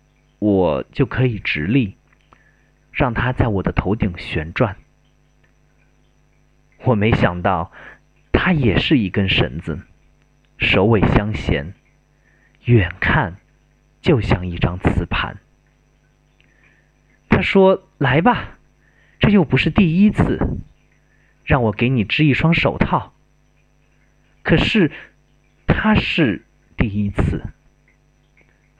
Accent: native